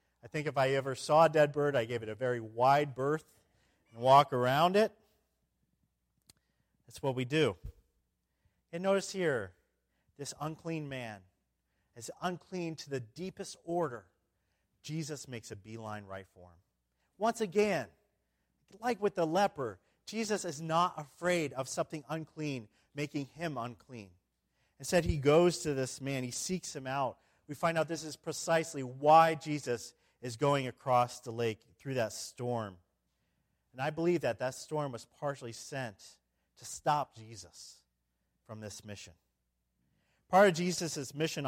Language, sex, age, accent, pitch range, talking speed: English, male, 40-59, American, 115-160 Hz, 150 wpm